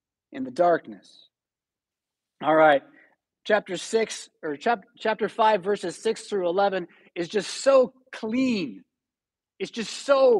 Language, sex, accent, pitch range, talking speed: English, male, American, 175-230 Hz, 125 wpm